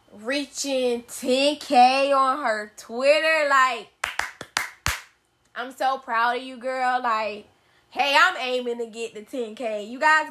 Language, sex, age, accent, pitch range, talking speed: English, female, 10-29, American, 210-270 Hz, 130 wpm